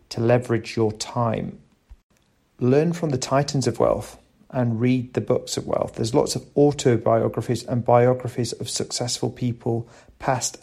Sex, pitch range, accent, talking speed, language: male, 115-135 Hz, British, 145 wpm, English